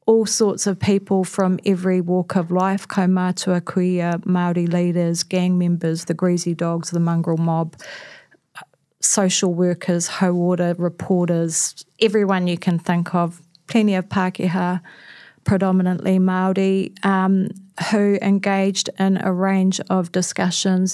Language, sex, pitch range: English, female, 175-190 Hz